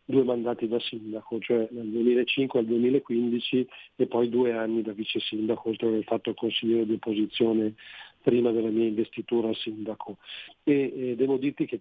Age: 50-69